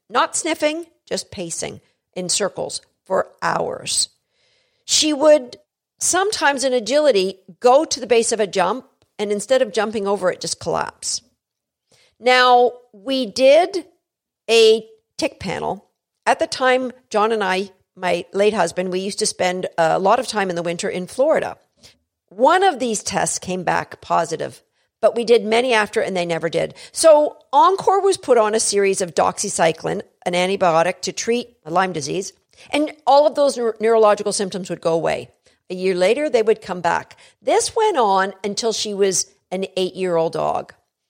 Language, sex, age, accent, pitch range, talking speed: English, female, 50-69, American, 180-255 Hz, 165 wpm